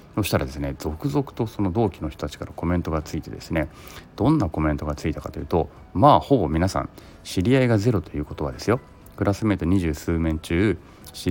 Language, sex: Japanese, male